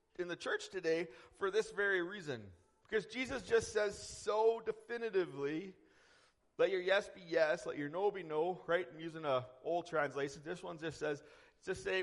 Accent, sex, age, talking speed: American, male, 40-59, 180 wpm